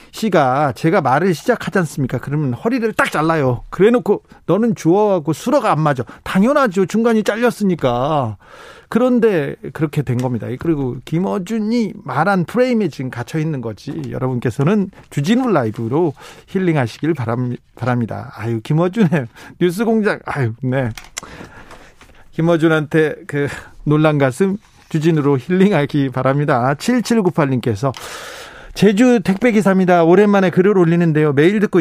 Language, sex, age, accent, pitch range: Korean, male, 40-59, native, 135-205 Hz